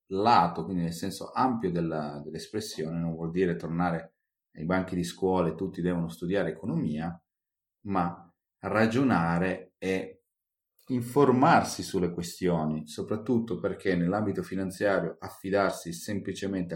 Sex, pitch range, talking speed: male, 85-105 Hz, 110 wpm